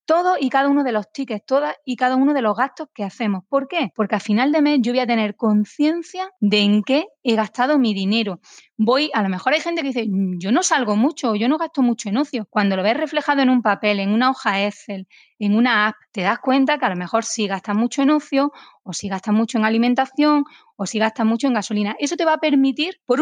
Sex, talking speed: female, 255 wpm